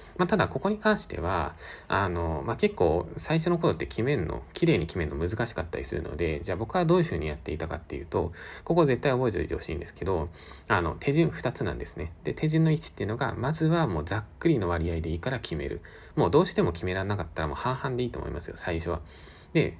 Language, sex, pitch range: Japanese, male, 85-140 Hz